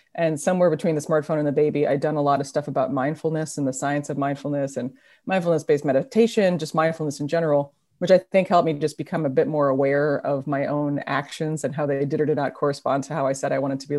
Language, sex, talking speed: English, female, 255 wpm